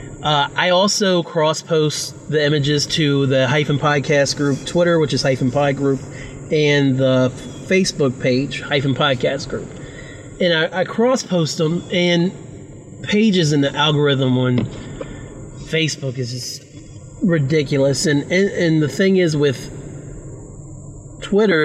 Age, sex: 30-49, male